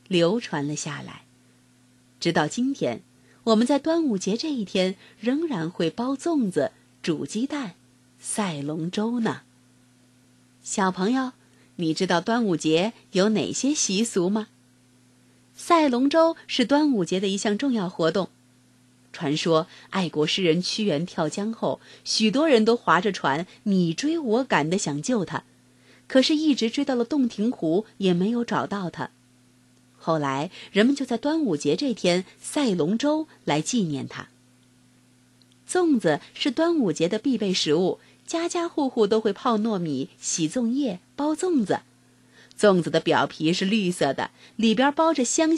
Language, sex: Chinese, female